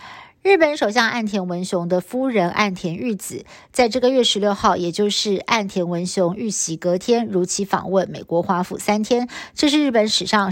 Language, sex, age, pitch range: Chinese, female, 50-69, 185-235 Hz